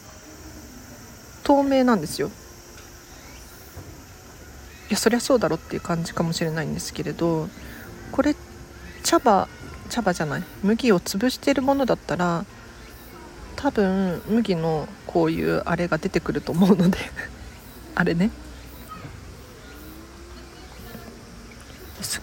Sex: female